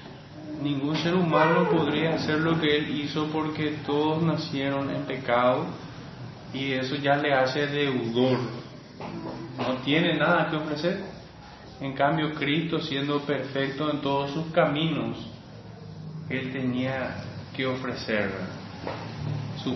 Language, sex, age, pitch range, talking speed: Spanish, male, 30-49, 130-155 Hz, 120 wpm